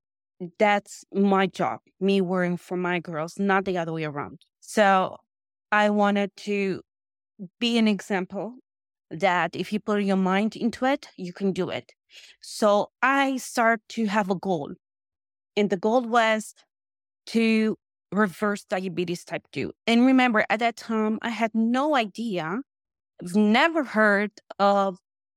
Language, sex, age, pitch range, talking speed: English, female, 20-39, 190-220 Hz, 145 wpm